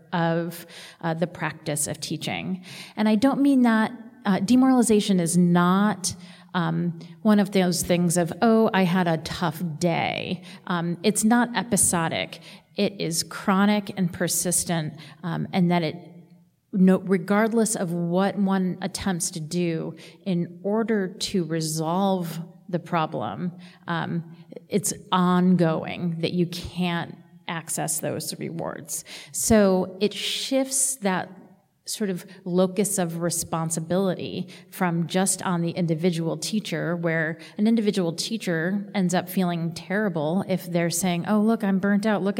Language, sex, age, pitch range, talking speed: English, female, 40-59, 170-195 Hz, 135 wpm